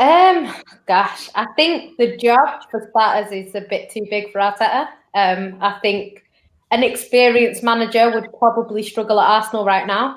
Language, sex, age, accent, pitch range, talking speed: English, female, 20-39, British, 205-245 Hz, 165 wpm